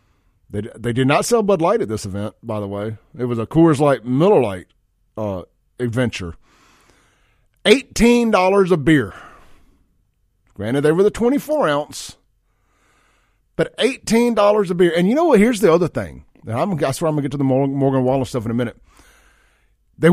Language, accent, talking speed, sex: English, American, 180 wpm, male